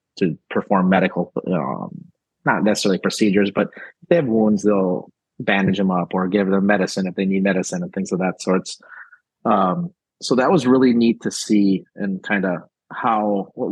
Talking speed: 185 wpm